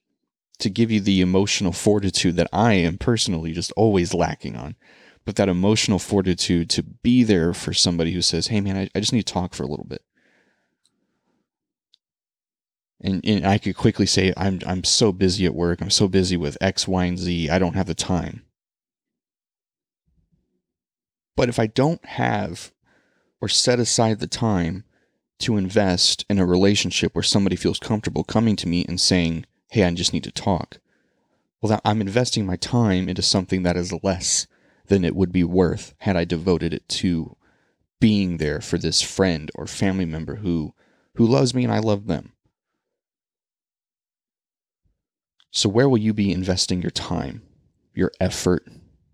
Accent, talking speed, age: American, 170 wpm, 30-49